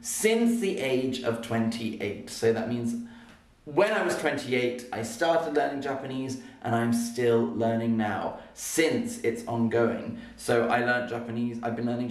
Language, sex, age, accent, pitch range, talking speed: English, male, 30-49, British, 115-150 Hz, 155 wpm